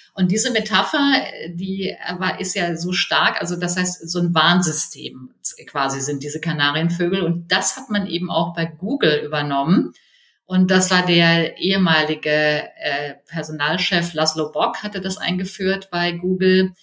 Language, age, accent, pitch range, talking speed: German, 50-69, German, 165-185 Hz, 145 wpm